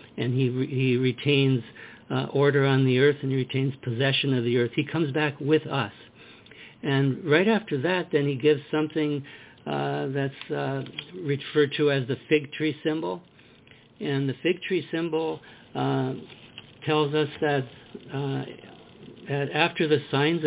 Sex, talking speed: male, 160 wpm